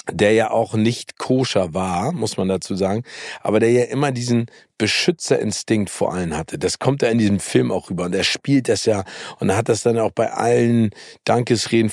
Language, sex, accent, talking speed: German, male, German, 205 wpm